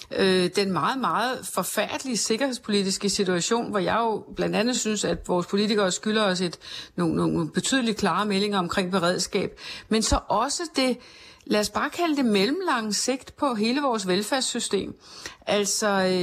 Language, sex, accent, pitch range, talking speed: Danish, female, native, 195-245 Hz, 150 wpm